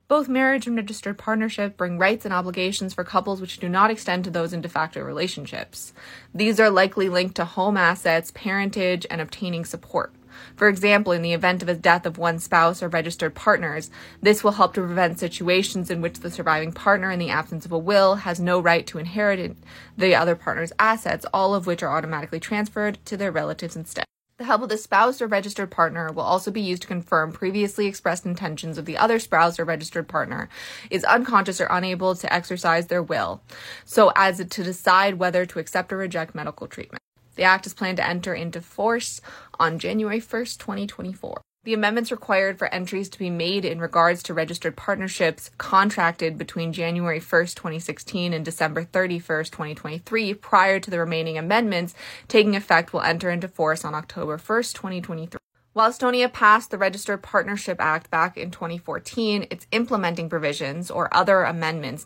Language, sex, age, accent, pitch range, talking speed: English, female, 20-39, American, 165-200 Hz, 185 wpm